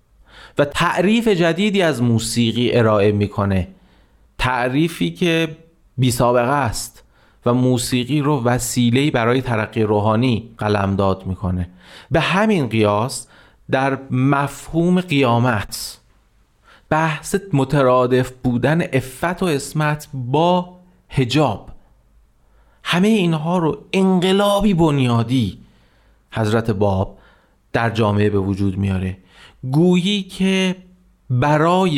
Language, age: Persian, 40-59